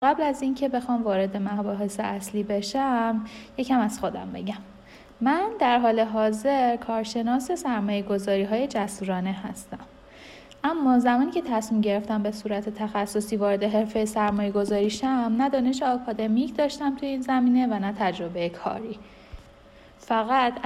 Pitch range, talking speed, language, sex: 200-250 Hz, 130 wpm, Persian, female